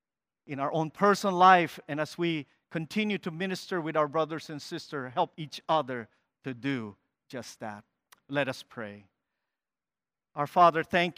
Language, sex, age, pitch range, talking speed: English, male, 50-69, 145-185 Hz, 155 wpm